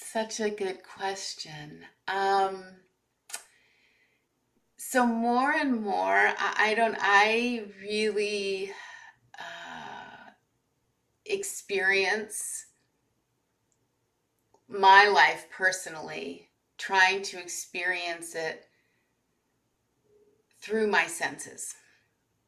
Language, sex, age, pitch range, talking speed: English, female, 30-49, 175-225 Hz, 70 wpm